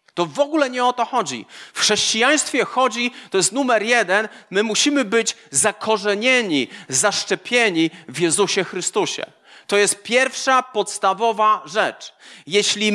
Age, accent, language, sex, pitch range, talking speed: 40-59, native, Polish, male, 190-240 Hz, 130 wpm